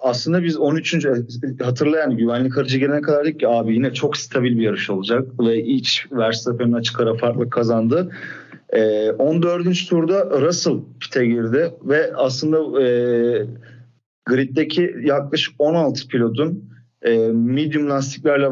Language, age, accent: Turkish, 40-59, native